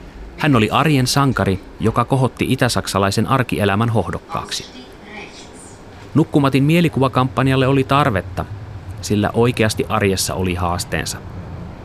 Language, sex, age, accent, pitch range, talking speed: Finnish, male, 30-49, native, 90-115 Hz, 90 wpm